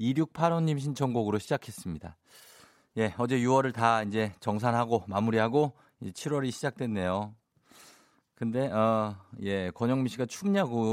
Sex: male